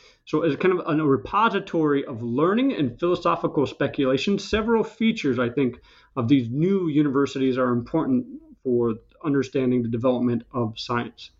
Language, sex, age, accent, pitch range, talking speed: English, male, 40-59, American, 120-150 Hz, 140 wpm